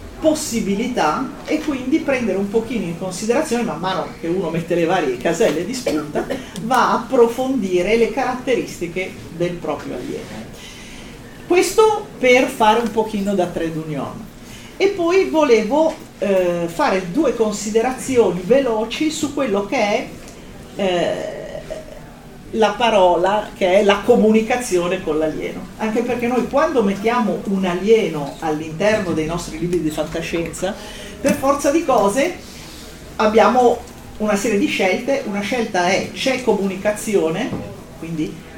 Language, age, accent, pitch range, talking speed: Italian, 40-59, native, 185-245 Hz, 125 wpm